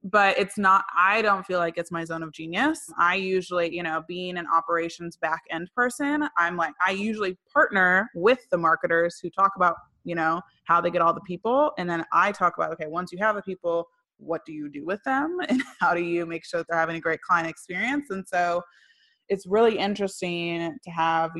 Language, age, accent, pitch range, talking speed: English, 20-39, American, 165-195 Hz, 220 wpm